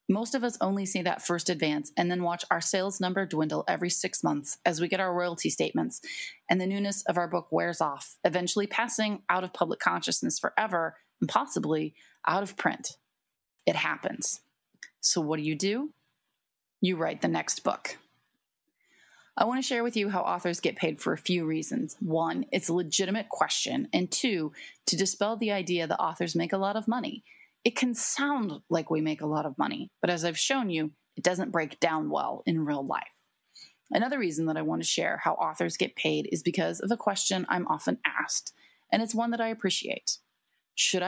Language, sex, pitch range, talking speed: English, female, 165-215 Hz, 200 wpm